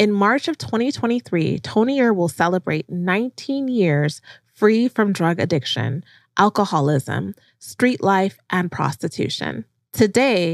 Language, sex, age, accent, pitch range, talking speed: English, female, 20-39, American, 170-225 Hz, 110 wpm